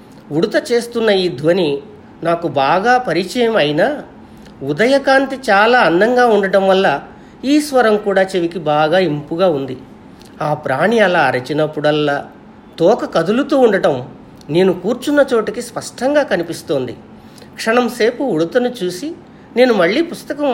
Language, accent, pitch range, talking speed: Telugu, native, 170-245 Hz, 110 wpm